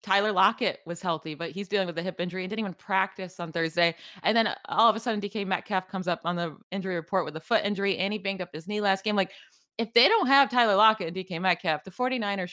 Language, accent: English, American